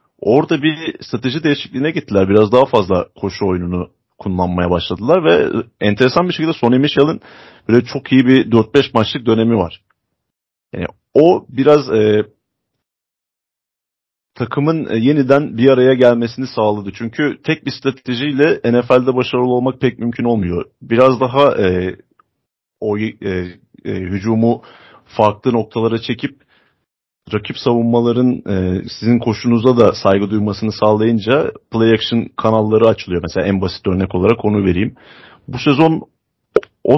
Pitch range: 105-130 Hz